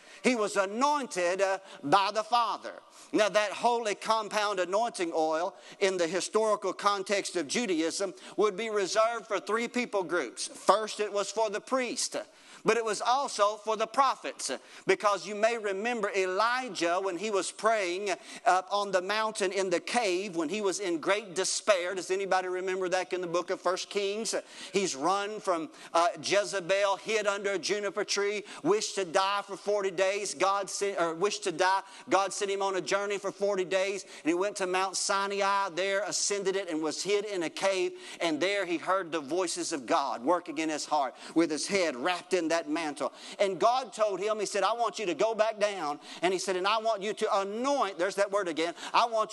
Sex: male